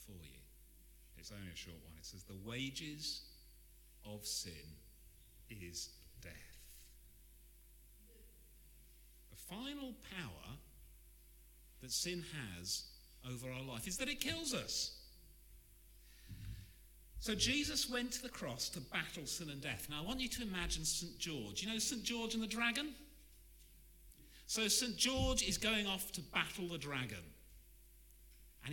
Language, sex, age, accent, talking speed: English, male, 50-69, British, 140 wpm